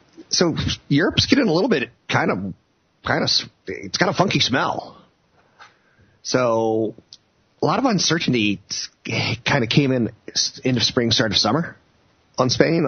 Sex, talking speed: male, 150 wpm